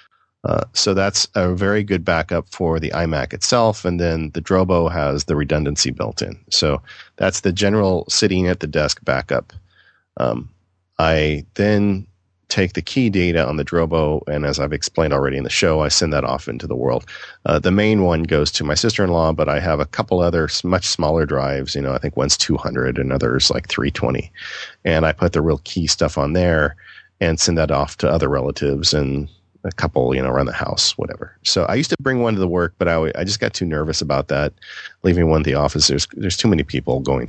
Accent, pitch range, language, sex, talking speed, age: American, 75-95 Hz, English, male, 220 wpm, 40-59